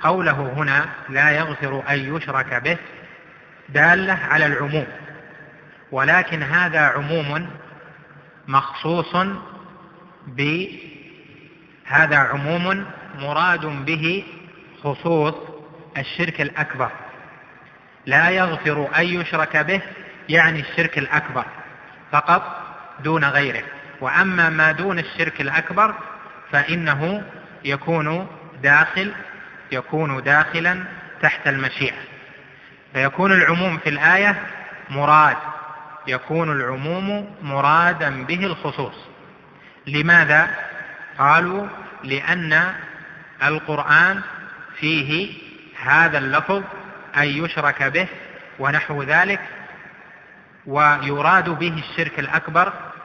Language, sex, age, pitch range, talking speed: Arabic, male, 30-49, 145-175 Hz, 80 wpm